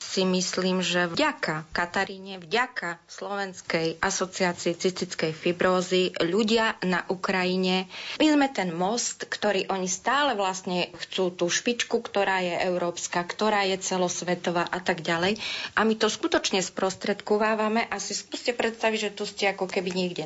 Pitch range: 175-215 Hz